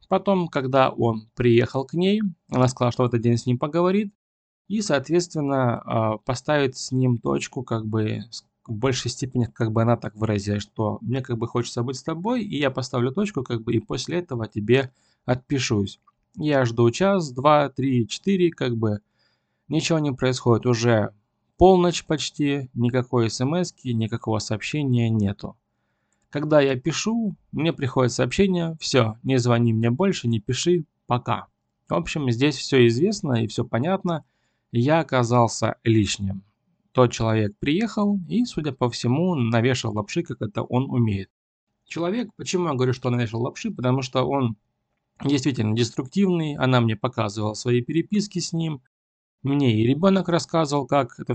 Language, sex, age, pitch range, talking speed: Russian, male, 20-39, 115-150 Hz, 155 wpm